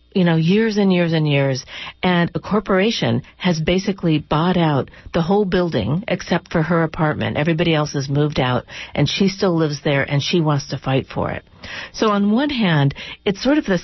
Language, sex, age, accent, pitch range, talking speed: English, female, 50-69, American, 155-195 Hz, 200 wpm